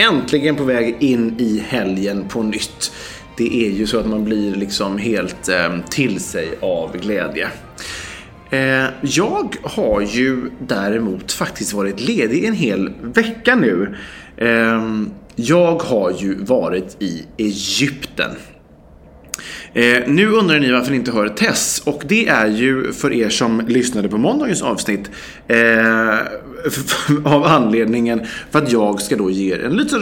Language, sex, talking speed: English, male, 135 wpm